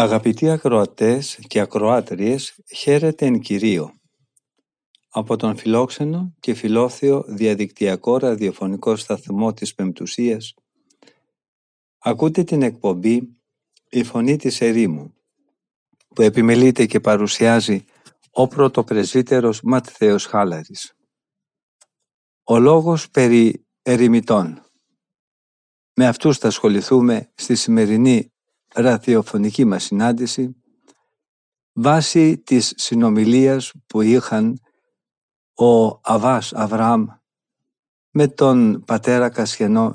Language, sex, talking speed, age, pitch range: Greek, male, 85 wpm, 50-69, 110-130 Hz